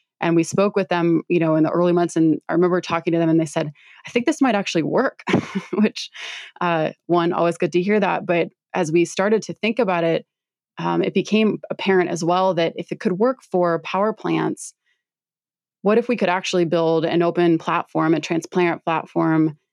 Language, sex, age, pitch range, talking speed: English, female, 20-39, 165-190 Hz, 205 wpm